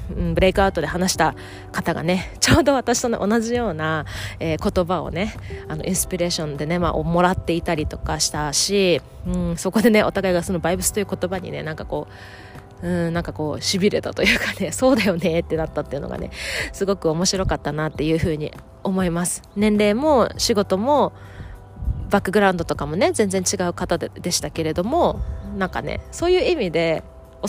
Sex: female